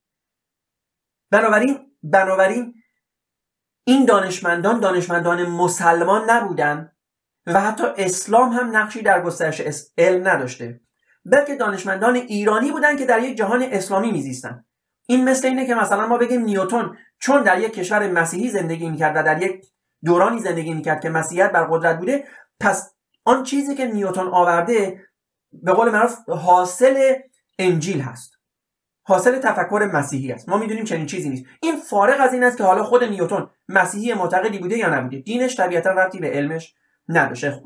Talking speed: 150 wpm